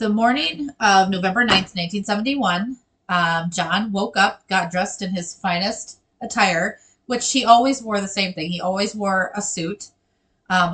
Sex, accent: female, American